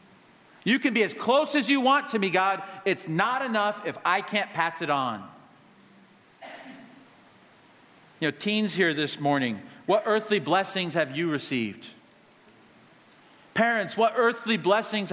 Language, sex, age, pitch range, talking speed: English, male, 50-69, 165-225 Hz, 145 wpm